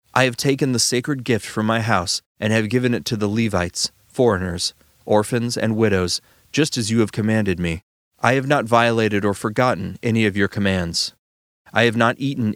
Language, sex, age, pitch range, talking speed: English, male, 30-49, 95-120 Hz, 190 wpm